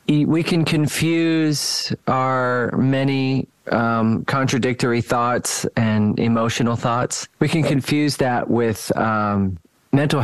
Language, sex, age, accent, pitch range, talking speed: German, male, 30-49, American, 110-135 Hz, 105 wpm